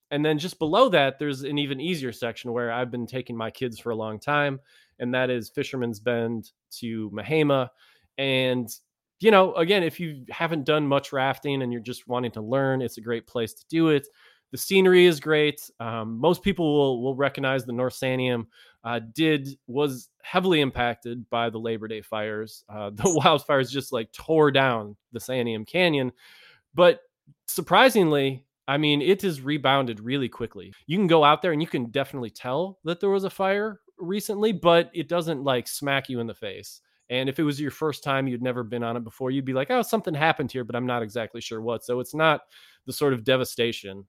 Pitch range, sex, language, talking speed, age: 120-155 Hz, male, English, 205 wpm, 20-39